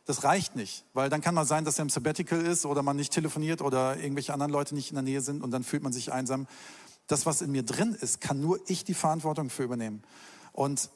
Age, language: 40-59, German